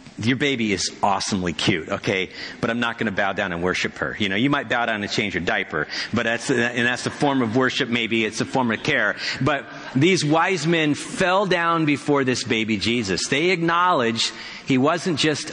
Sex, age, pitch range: male, 50-69, 130-170 Hz